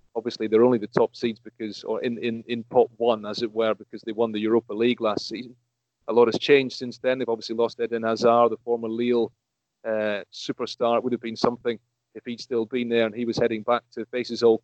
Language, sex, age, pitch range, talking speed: English, male, 40-59, 110-120 Hz, 240 wpm